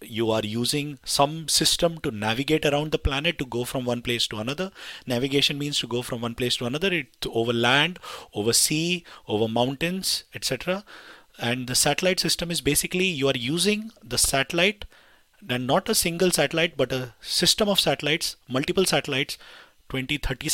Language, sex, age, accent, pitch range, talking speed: English, male, 30-49, Indian, 120-170 Hz, 165 wpm